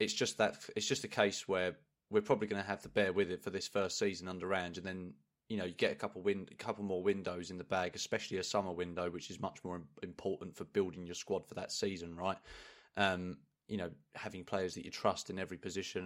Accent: British